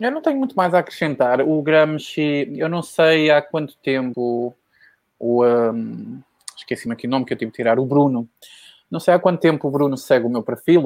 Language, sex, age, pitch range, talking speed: Portuguese, male, 20-39, 135-185 Hz, 220 wpm